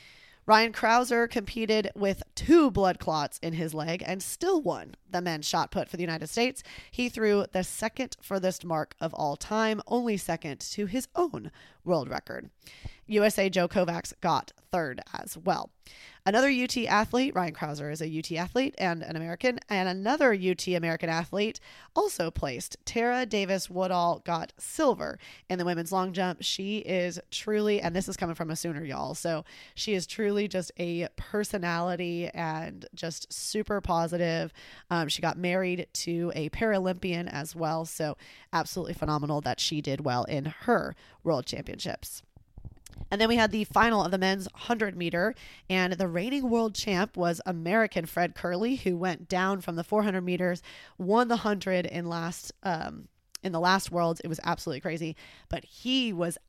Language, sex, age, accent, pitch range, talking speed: English, female, 20-39, American, 170-210 Hz, 170 wpm